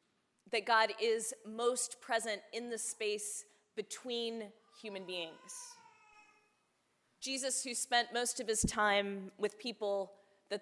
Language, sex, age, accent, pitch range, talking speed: English, female, 20-39, American, 195-235 Hz, 120 wpm